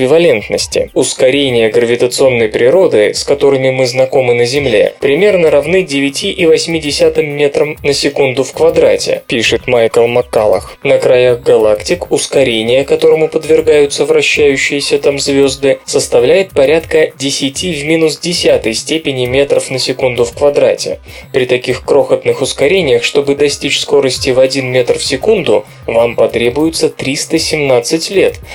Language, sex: Russian, male